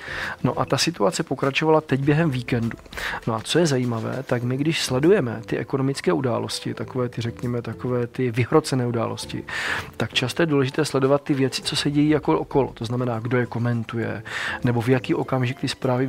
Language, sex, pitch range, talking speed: Slovak, male, 125-140 Hz, 185 wpm